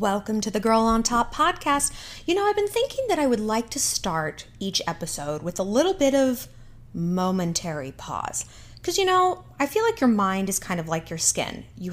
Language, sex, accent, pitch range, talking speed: English, female, American, 155-245 Hz, 210 wpm